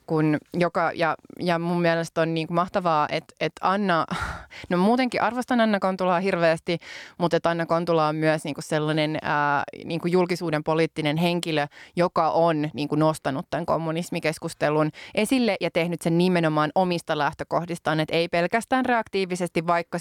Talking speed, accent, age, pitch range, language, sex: 145 wpm, native, 20-39, 155-180 Hz, Finnish, female